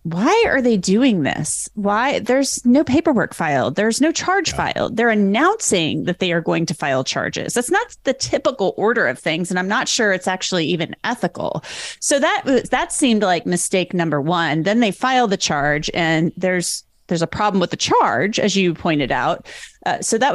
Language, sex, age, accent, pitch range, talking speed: English, female, 30-49, American, 165-210 Hz, 195 wpm